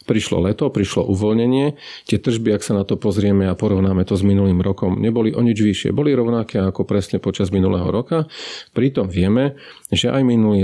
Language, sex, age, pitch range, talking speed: Slovak, male, 40-59, 95-120 Hz, 185 wpm